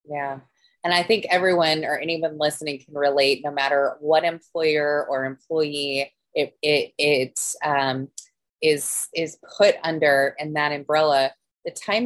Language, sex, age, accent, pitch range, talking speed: English, female, 20-39, American, 150-170 Hz, 145 wpm